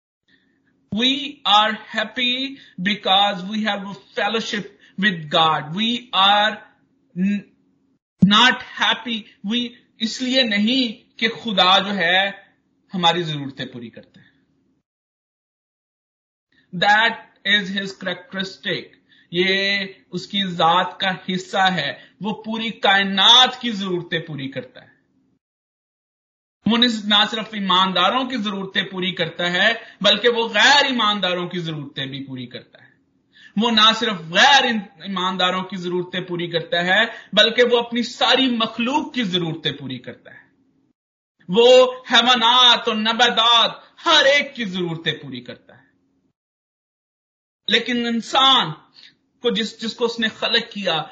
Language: Hindi